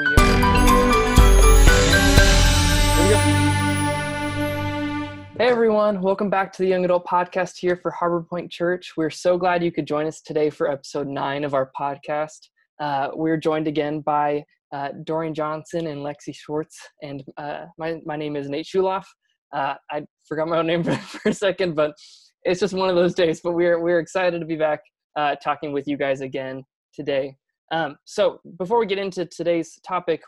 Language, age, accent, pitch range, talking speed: English, 20-39, American, 145-170 Hz, 170 wpm